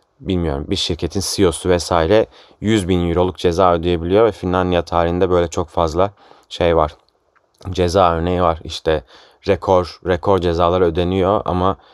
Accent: native